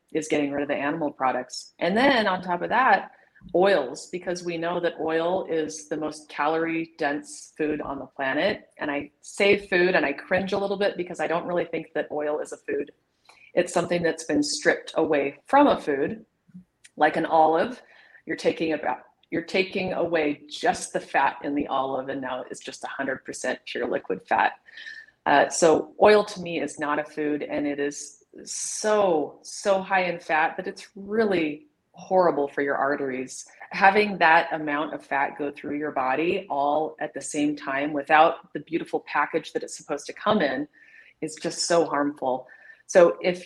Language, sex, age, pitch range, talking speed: English, female, 30-49, 145-195 Hz, 190 wpm